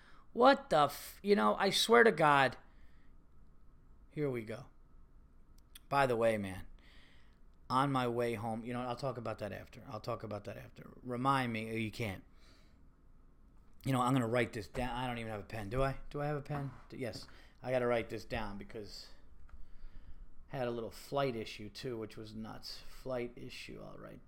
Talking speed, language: 190 wpm, English